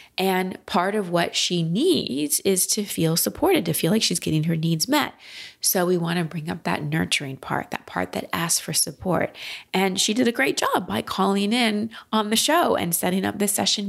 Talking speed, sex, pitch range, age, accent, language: 215 wpm, female, 170-235 Hz, 30-49, American, English